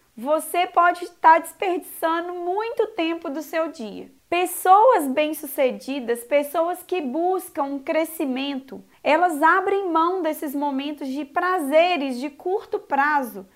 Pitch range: 285-350 Hz